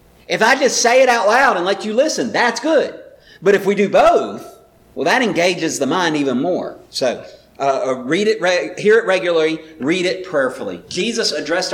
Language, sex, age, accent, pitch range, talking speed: English, male, 50-69, American, 150-215 Hz, 190 wpm